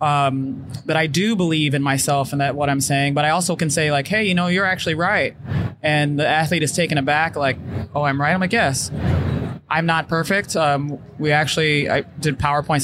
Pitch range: 145-165 Hz